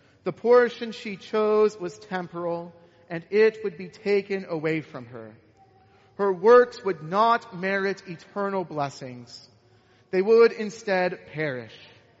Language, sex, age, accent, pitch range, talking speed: English, male, 40-59, American, 155-210 Hz, 125 wpm